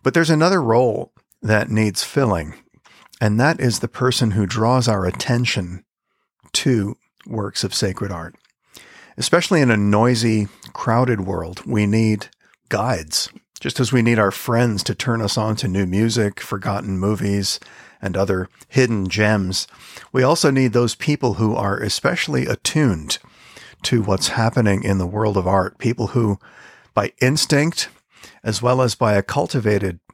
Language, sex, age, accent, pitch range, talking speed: English, male, 50-69, American, 100-120 Hz, 150 wpm